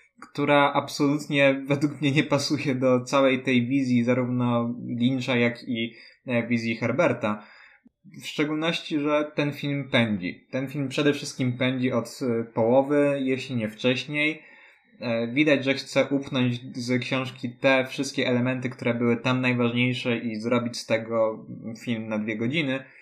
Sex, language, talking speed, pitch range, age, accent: male, Polish, 140 wpm, 120-145 Hz, 20-39, native